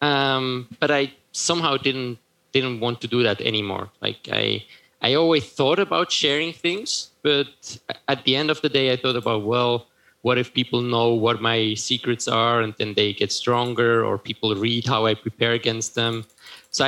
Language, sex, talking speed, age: English, male, 185 wpm, 20-39